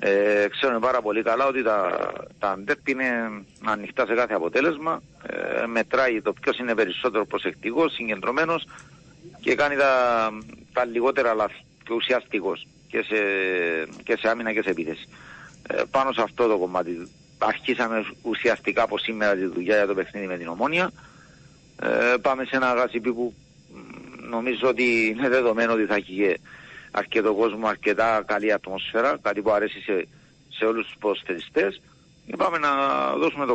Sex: male